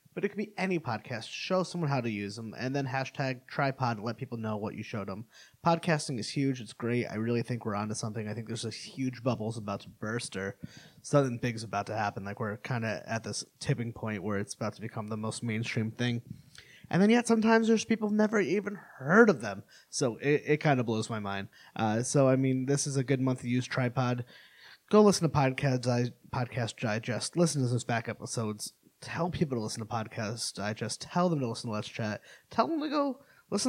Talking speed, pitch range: 235 wpm, 115-160 Hz